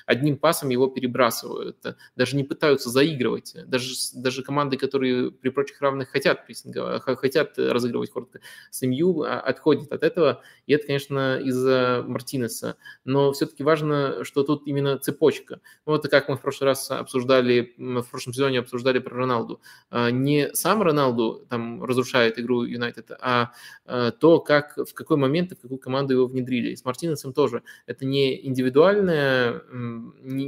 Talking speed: 150 wpm